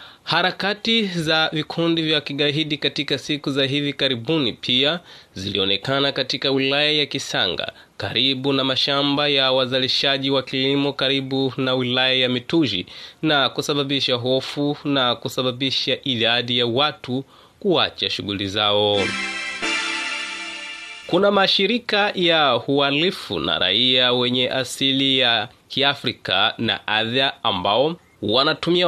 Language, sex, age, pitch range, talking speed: English, male, 20-39, 125-150 Hz, 110 wpm